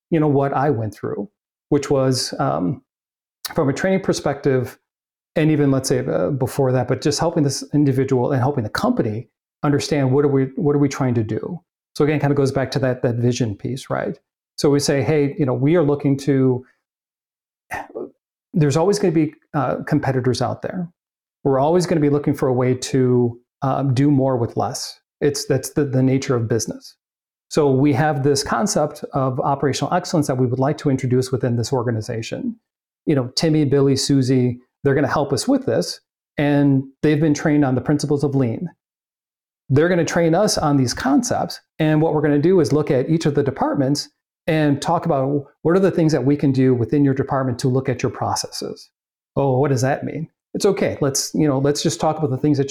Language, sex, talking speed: English, male, 210 wpm